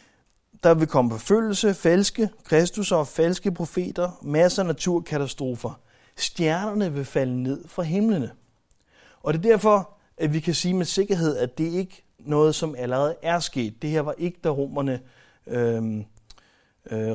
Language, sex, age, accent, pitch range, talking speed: Danish, male, 30-49, native, 125-165 Hz, 155 wpm